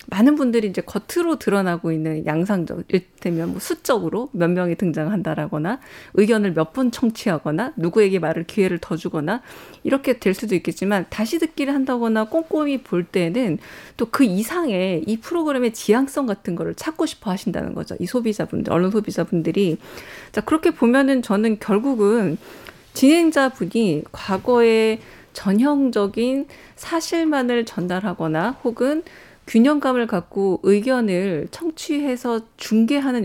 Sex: female